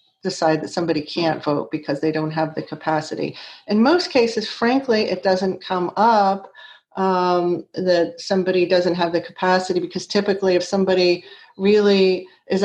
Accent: American